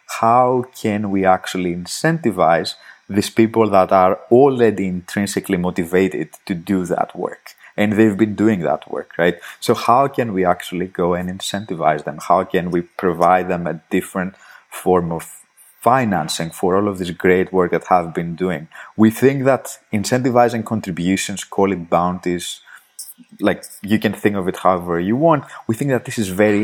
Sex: male